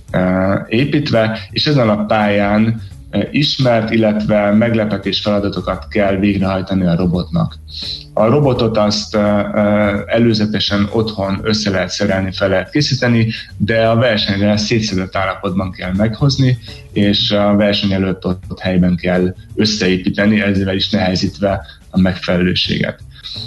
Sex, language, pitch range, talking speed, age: male, Hungarian, 95-115 Hz, 115 wpm, 20-39